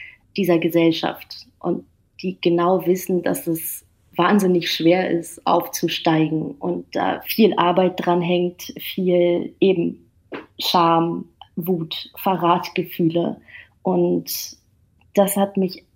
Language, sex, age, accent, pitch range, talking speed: German, female, 30-49, German, 165-185 Hz, 100 wpm